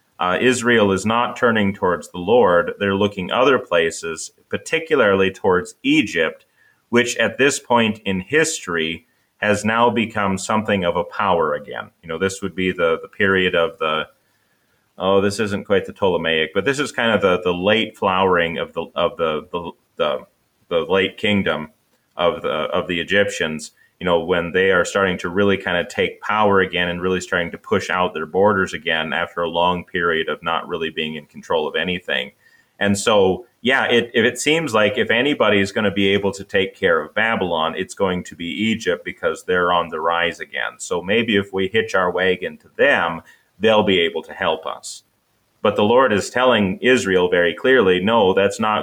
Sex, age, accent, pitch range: male, 30-49, American, 95-120 Hz